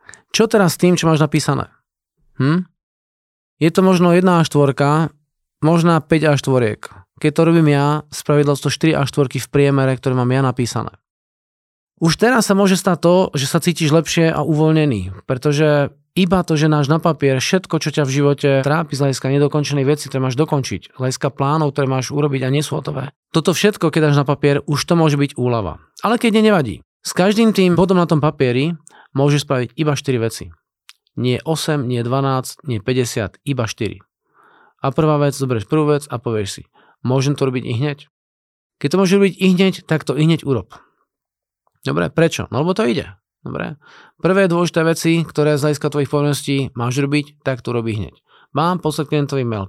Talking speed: 190 wpm